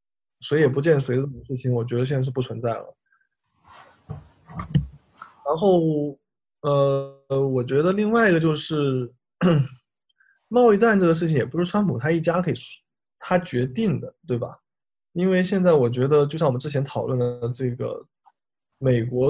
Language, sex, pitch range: Chinese, male, 125-165 Hz